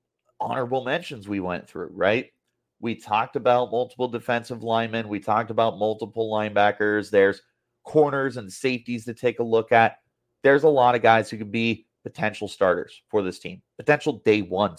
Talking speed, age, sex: 170 wpm, 30-49, male